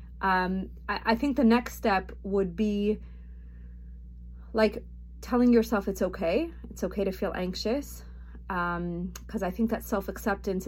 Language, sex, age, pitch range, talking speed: English, female, 30-49, 175-210 Hz, 140 wpm